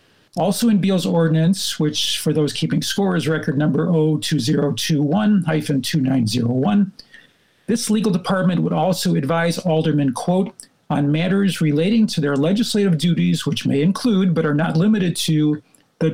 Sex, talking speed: male, 140 wpm